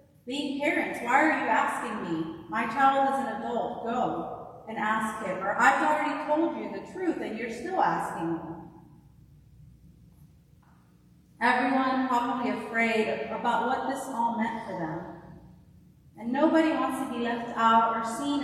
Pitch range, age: 215-270 Hz, 30-49